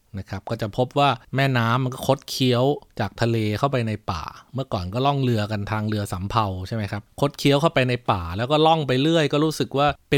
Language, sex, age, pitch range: Thai, male, 20-39, 110-140 Hz